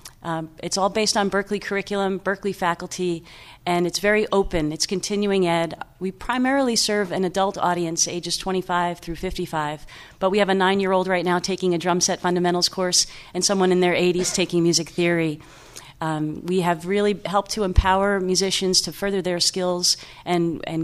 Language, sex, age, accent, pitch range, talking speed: English, female, 40-59, American, 160-195 Hz, 175 wpm